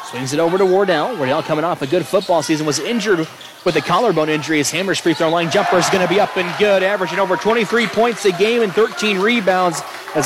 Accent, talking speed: American, 240 wpm